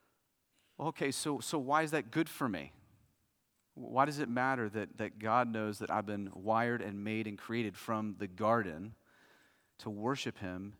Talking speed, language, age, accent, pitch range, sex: 170 wpm, English, 30-49, American, 100-115 Hz, male